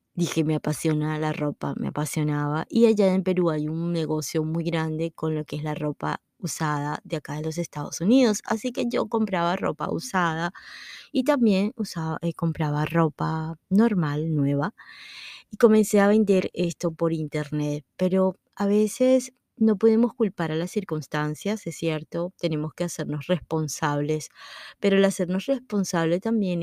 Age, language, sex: 20-39, Spanish, female